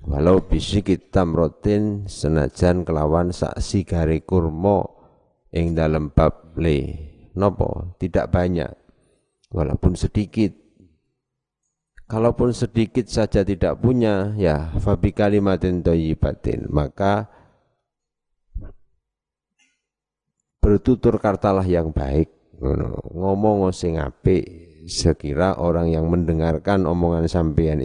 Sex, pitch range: male, 80-100 Hz